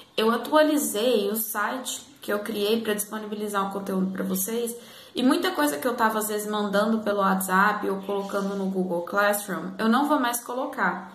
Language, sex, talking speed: Portuguese, female, 190 wpm